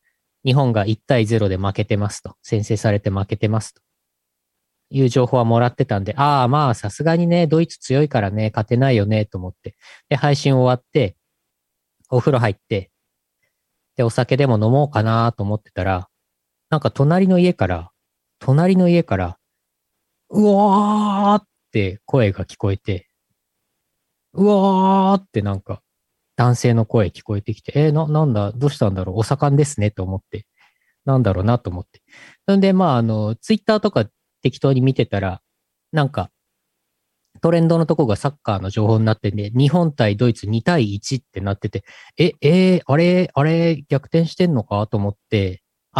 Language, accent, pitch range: Japanese, native, 100-145 Hz